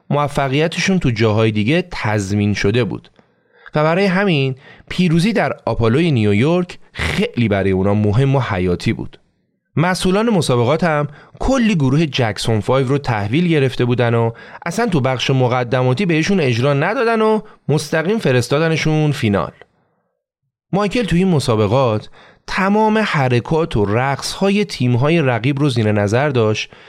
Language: Persian